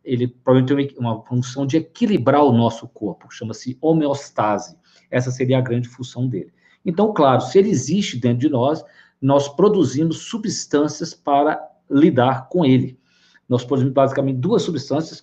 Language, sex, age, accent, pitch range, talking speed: Portuguese, male, 50-69, Brazilian, 125-165 Hz, 150 wpm